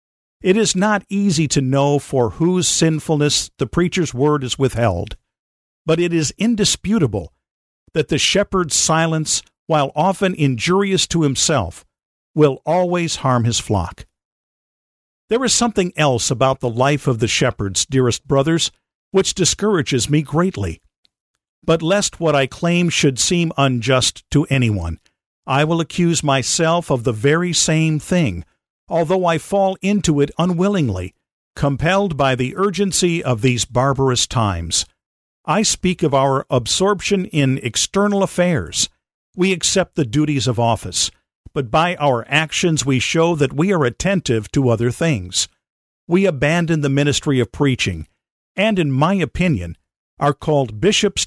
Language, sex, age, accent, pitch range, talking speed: English, male, 50-69, American, 125-175 Hz, 140 wpm